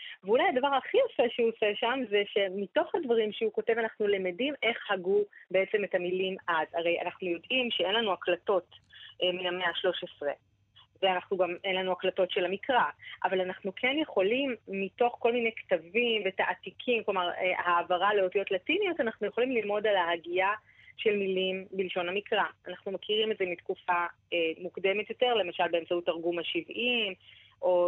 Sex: female